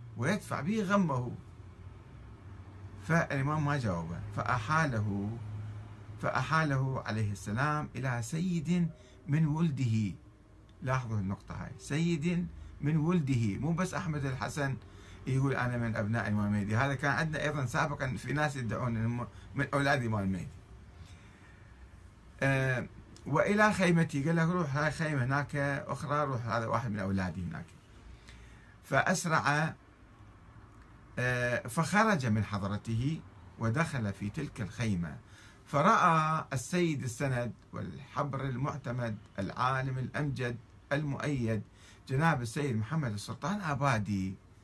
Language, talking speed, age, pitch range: Arabic, 105 wpm, 50-69, 105-150 Hz